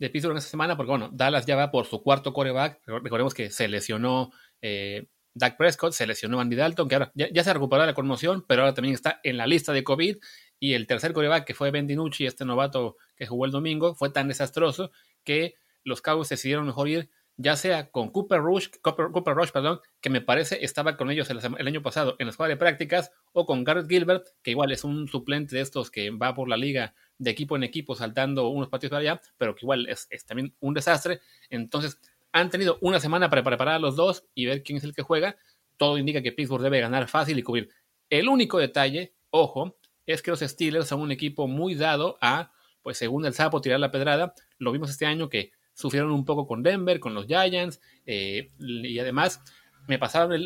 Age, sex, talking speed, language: 30-49, male, 225 wpm, Spanish